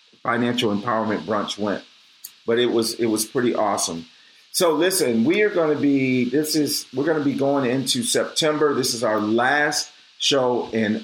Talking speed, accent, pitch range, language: 180 wpm, American, 115-130 Hz, English